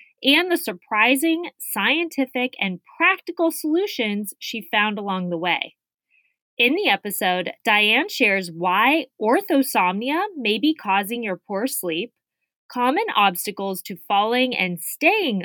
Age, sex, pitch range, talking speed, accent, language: 20-39, female, 195-290 Hz, 120 wpm, American, English